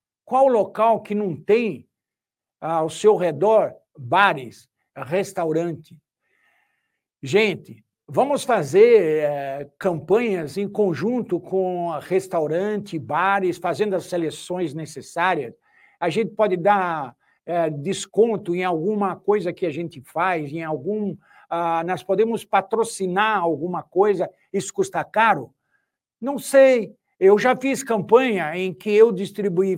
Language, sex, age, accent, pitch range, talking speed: Portuguese, male, 60-79, Brazilian, 170-220 Hz, 120 wpm